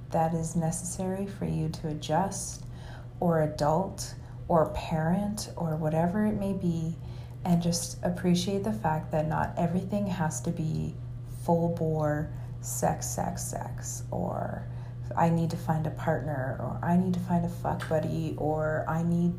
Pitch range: 150-180 Hz